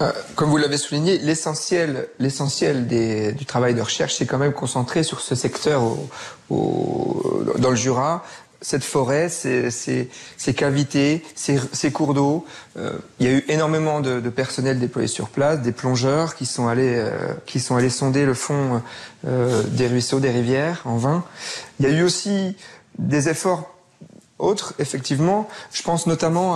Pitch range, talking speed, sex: 130-160 Hz, 170 wpm, male